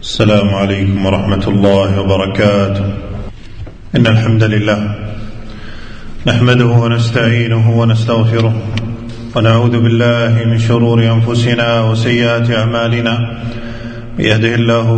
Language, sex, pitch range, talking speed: Arabic, male, 115-120 Hz, 75 wpm